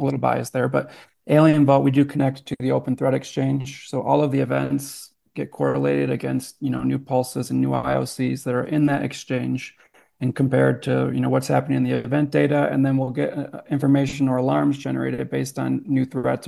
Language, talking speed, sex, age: English, 215 wpm, male, 30-49